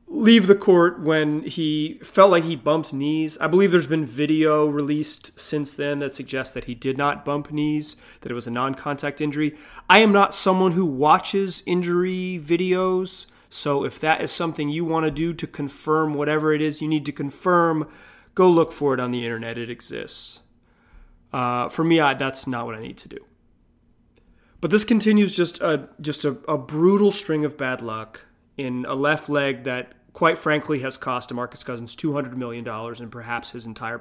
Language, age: English, 30-49